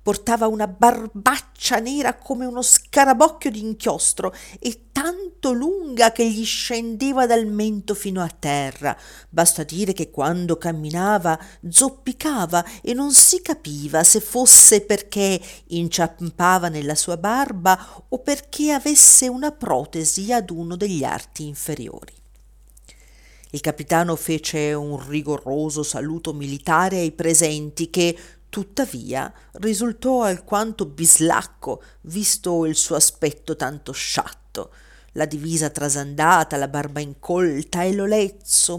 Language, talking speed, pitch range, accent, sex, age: Italian, 115 wpm, 160-225 Hz, native, female, 50-69